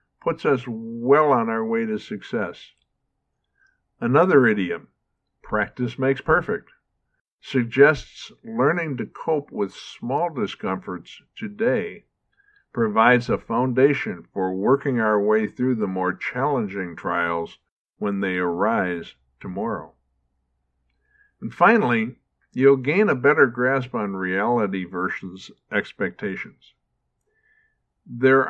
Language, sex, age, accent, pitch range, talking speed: English, male, 50-69, American, 95-155 Hz, 105 wpm